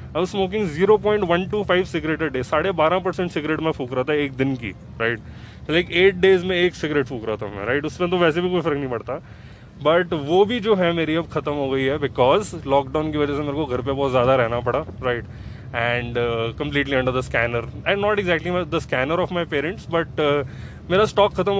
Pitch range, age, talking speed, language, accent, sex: 130-180 Hz, 20-39, 230 wpm, Hindi, native, male